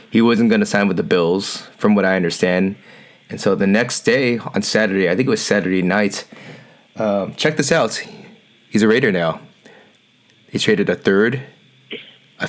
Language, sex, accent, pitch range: English, male, American, 110-155 Hz